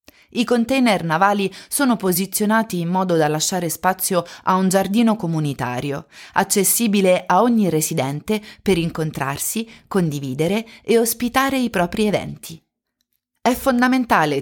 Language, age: Italian, 30-49